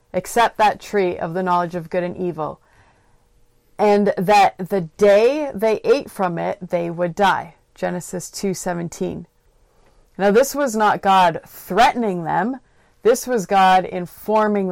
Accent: American